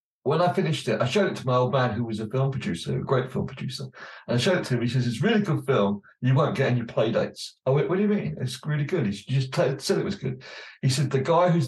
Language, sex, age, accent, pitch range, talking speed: English, male, 50-69, British, 120-155 Hz, 305 wpm